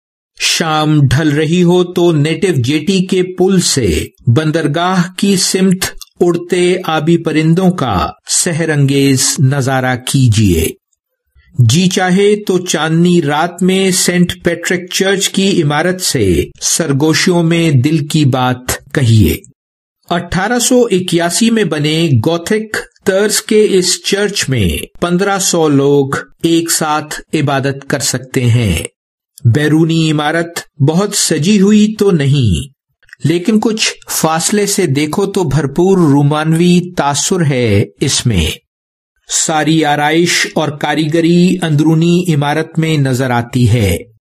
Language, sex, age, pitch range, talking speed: English, male, 50-69, 140-180 Hz, 110 wpm